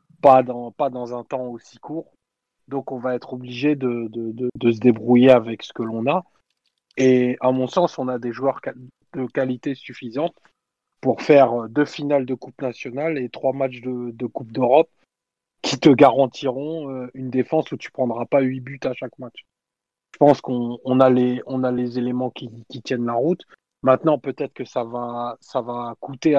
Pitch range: 125-150 Hz